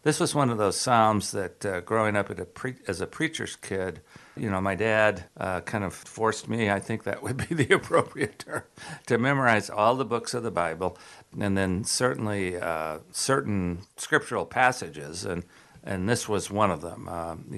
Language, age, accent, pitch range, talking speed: English, 50-69, American, 95-115 Hz, 195 wpm